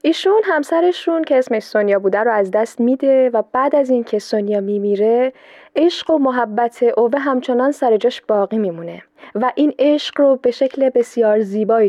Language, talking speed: Persian, 165 wpm